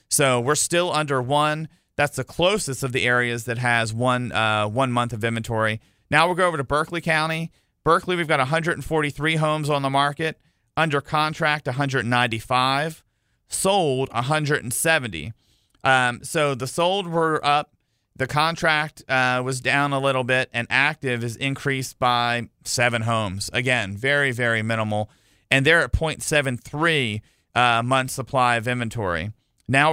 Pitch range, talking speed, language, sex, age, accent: 120-155 Hz, 150 wpm, English, male, 40-59, American